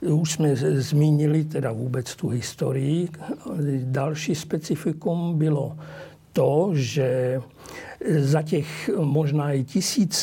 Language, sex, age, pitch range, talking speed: Slovak, male, 60-79, 140-170 Hz, 100 wpm